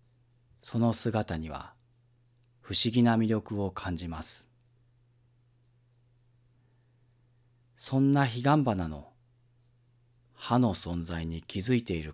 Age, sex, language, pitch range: 40-59, male, Japanese, 105-120 Hz